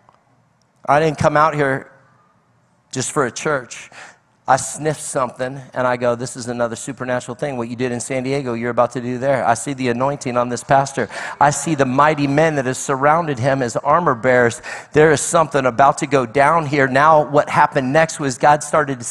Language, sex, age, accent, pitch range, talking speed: English, male, 40-59, American, 135-165 Hz, 205 wpm